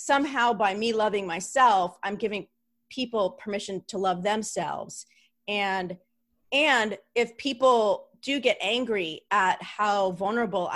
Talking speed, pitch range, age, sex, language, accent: 125 wpm, 195-255 Hz, 30-49, female, English, American